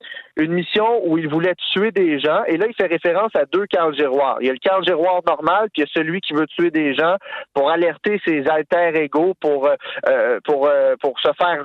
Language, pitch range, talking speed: French, 145-190 Hz, 220 wpm